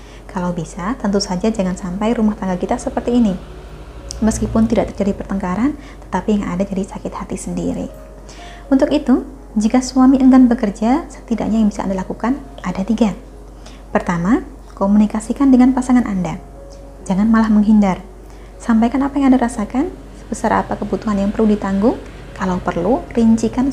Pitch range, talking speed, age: 190-240 Hz, 145 wpm, 20-39